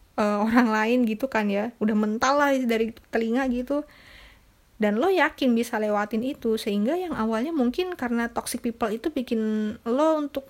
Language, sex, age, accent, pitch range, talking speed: Indonesian, female, 20-39, native, 210-255 Hz, 160 wpm